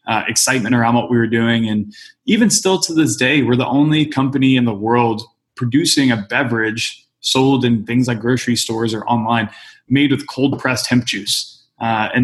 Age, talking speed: 20-39, 190 wpm